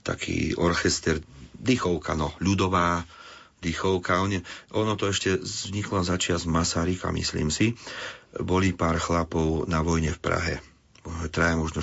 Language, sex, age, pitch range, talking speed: Slovak, male, 40-59, 85-100 Hz, 125 wpm